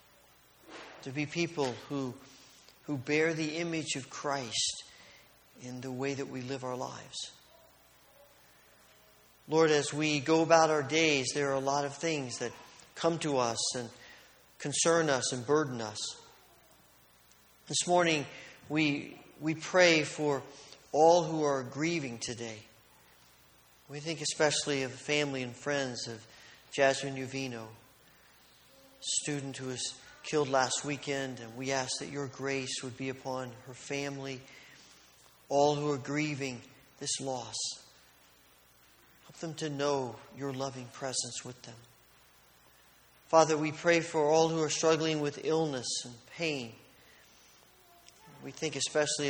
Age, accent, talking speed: 50-69, American, 135 wpm